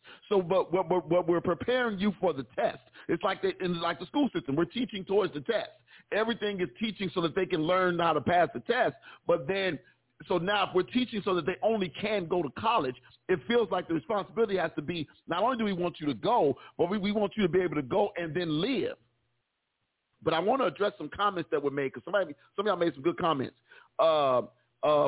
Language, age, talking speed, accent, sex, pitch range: English, 40-59, 245 wpm, American, male, 160-205 Hz